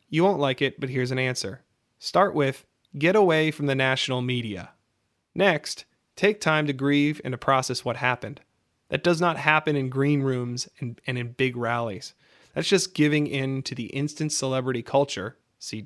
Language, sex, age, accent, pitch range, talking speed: English, male, 30-49, American, 130-170 Hz, 180 wpm